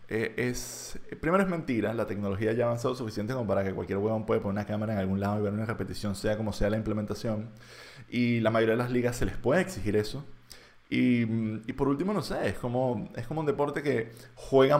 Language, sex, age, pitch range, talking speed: Spanish, male, 20-39, 105-130 Hz, 225 wpm